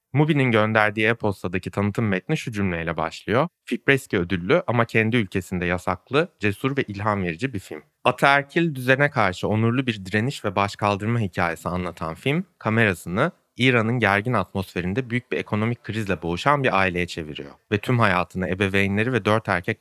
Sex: male